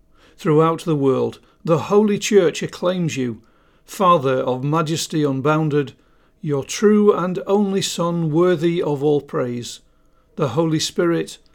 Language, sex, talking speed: English, male, 125 wpm